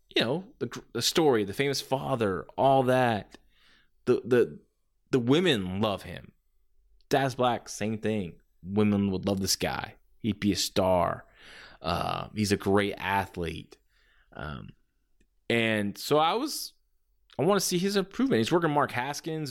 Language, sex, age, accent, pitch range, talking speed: English, male, 20-39, American, 100-150 Hz, 150 wpm